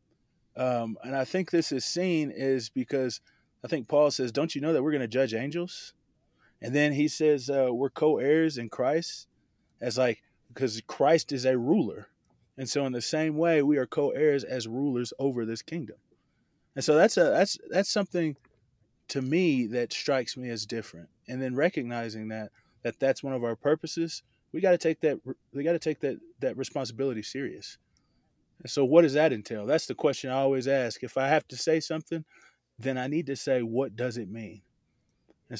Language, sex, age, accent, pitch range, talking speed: English, male, 20-39, American, 120-150 Hz, 195 wpm